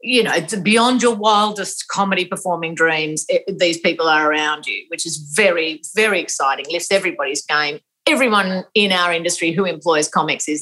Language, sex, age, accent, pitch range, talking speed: English, female, 30-49, Australian, 155-220 Hz, 180 wpm